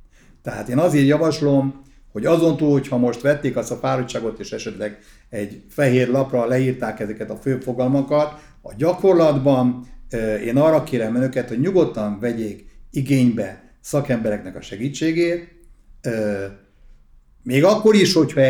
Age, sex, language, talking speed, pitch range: 60-79, male, Hungarian, 130 wpm, 110-150 Hz